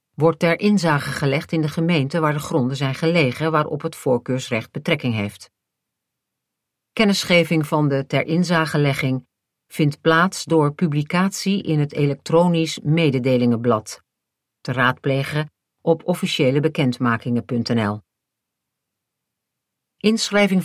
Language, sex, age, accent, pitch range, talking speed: Dutch, female, 50-69, Dutch, 130-170 Hz, 100 wpm